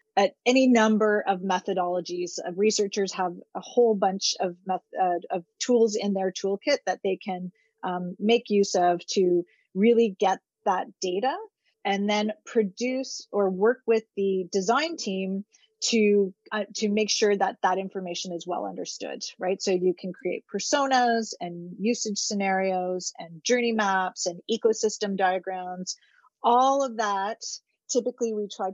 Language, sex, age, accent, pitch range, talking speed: English, female, 30-49, American, 185-220 Hz, 150 wpm